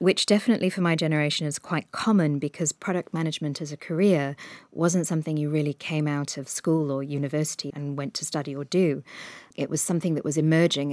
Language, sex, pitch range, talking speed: English, female, 145-165 Hz, 200 wpm